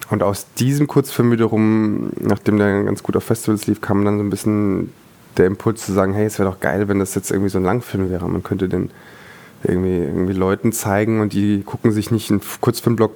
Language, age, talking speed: German, 20-39, 220 wpm